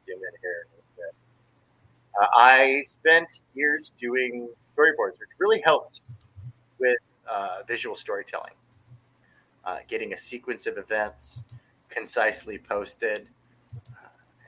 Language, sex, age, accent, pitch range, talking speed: English, male, 30-49, American, 110-135 Hz, 90 wpm